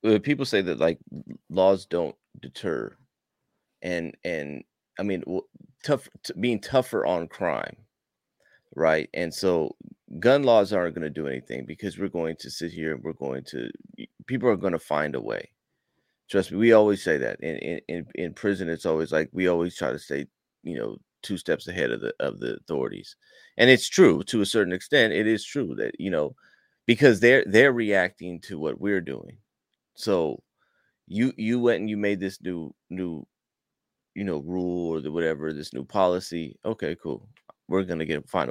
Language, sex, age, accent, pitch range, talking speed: English, male, 30-49, American, 80-100 Hz, 185 wpm